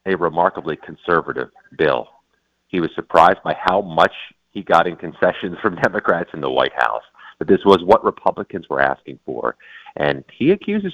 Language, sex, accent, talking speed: English, male, American, 170 wpm